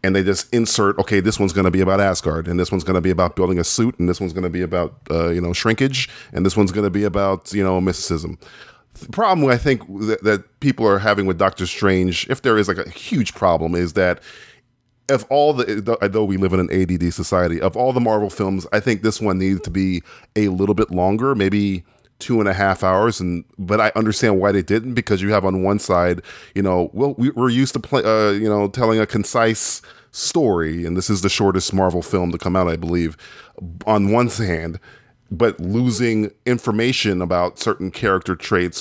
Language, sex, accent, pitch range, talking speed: English, male, American, 90-115 Hz, 225 wpm